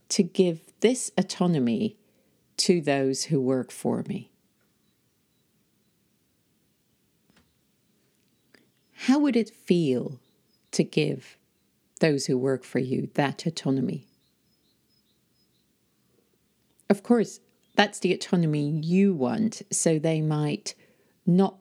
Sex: female